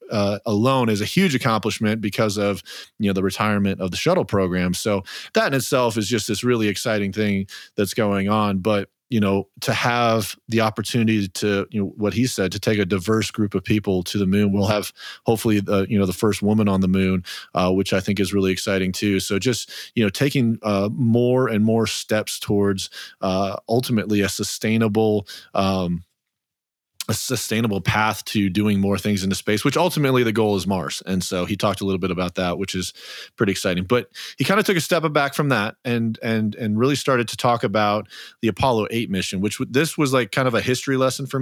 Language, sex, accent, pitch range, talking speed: English, male, American, 100-120 Hz, 215 wpm